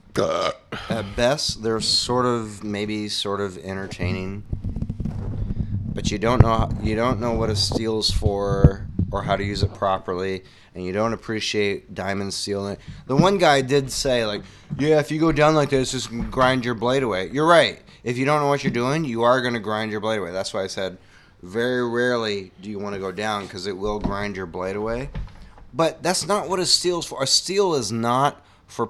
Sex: male